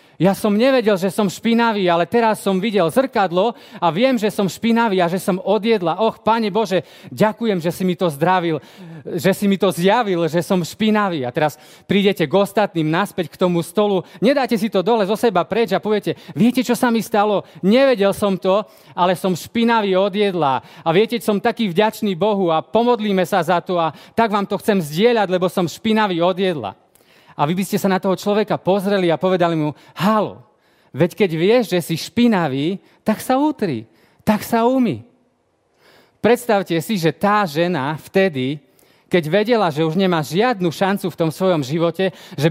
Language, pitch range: Slovak, 175-220 Hz